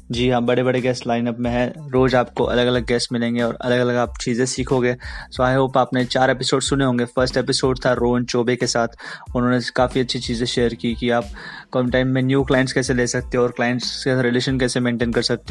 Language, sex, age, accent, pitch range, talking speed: Hindi, male, 20-39, native, 120-135 Hz, 240 wpm